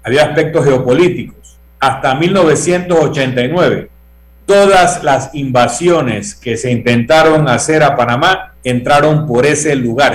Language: Spanish